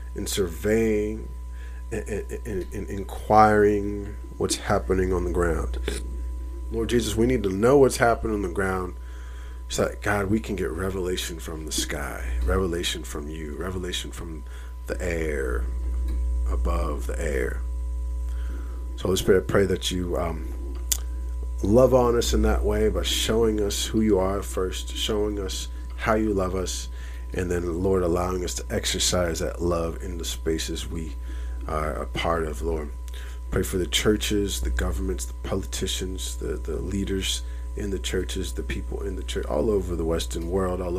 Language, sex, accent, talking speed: English, male, American, 165 wpm